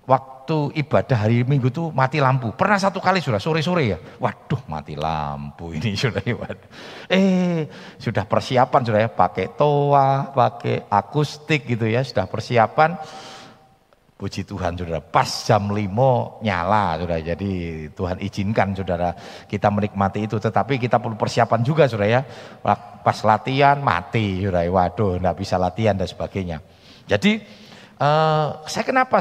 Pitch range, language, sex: 100-140 Hz, Indonesian, male